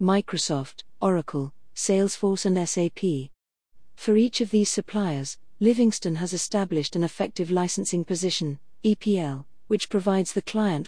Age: 40-59